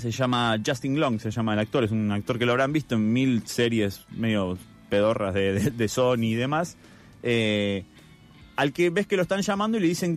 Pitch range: 110-160 Hz